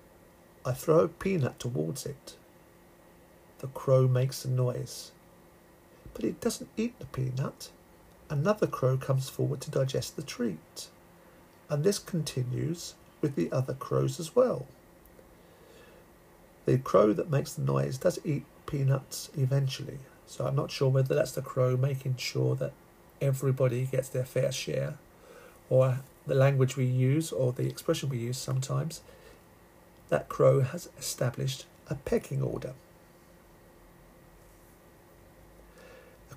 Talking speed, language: 130 wpm, English